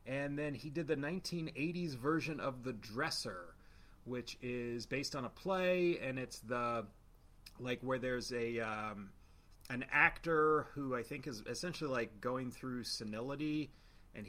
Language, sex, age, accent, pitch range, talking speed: English, male, 30-49, American, 115-145 Hz, 150 wpm